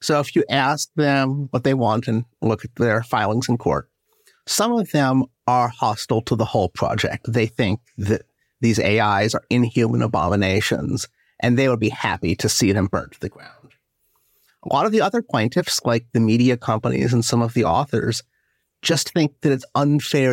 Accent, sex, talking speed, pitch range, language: American, male, 190 wpm, 110-130 Hz, English